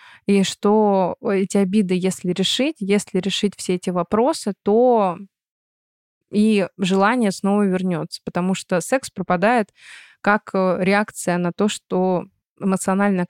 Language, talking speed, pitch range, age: Russian, 115 wpm, 185-215 Hz, 20-39